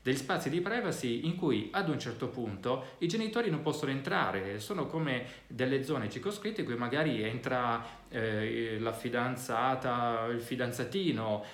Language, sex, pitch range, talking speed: Italian, male, 105-130 Hz, 150 wpm